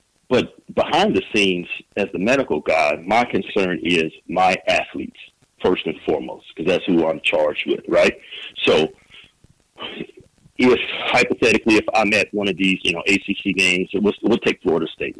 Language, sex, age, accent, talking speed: English, male, 40-59, American, 165 wpm